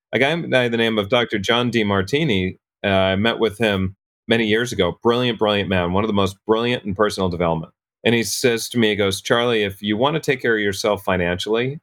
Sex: male